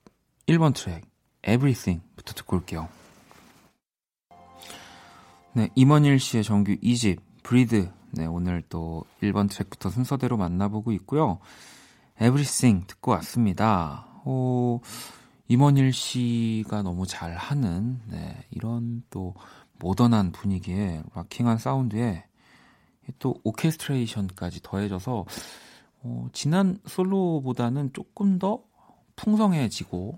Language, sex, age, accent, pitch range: Korean, male, 40-59, native, 95-135 Hz